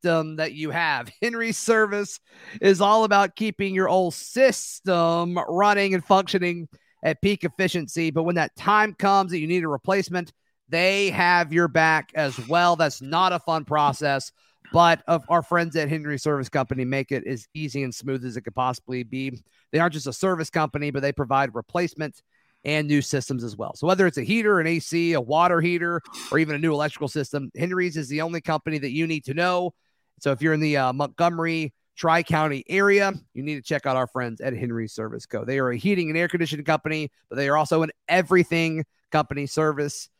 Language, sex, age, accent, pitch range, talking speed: English, male, 30-49, American, 140-180 Hz, 200 wpm